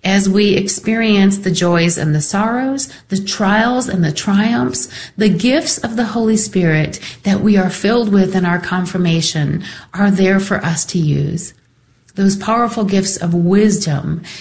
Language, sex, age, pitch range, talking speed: English, female, 40-59, 160-200 Hz, 160 wpm